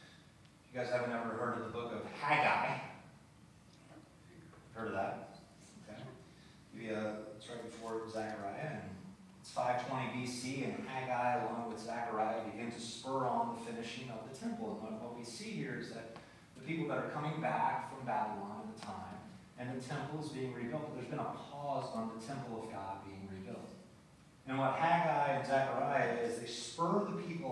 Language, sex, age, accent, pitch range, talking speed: English, male, 30-49, American, 120-155 Hz, 175 wpm